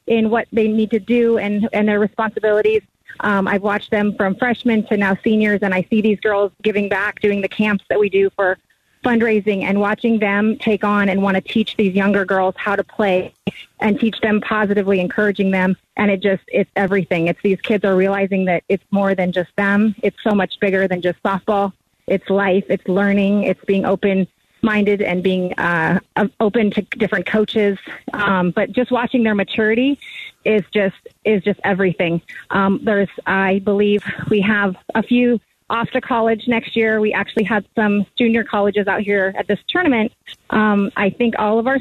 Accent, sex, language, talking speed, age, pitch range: American, female, English, 190 wpm, 30-49, 195-230 Hz